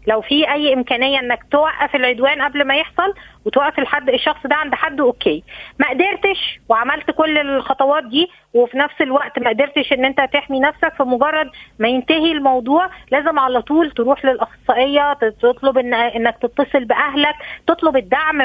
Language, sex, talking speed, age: Arabic, female, 155 wpm, 20-39